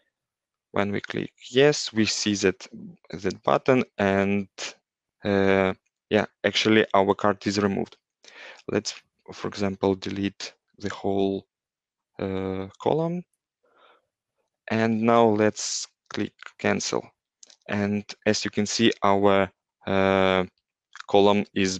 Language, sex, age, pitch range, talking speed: English, male, 20-39, 95-105 Hz, 105 wpm